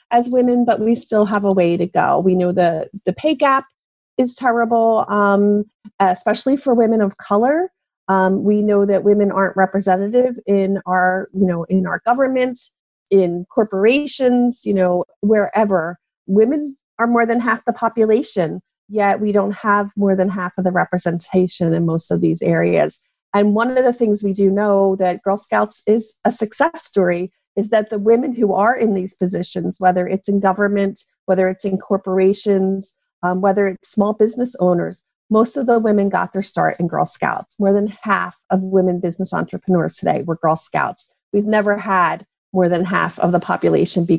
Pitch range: 190-230 Hz